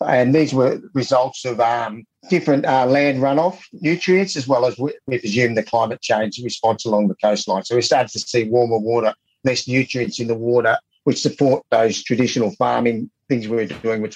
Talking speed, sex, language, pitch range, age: 190 wpm, male, English, 115-140 Hz, 50-69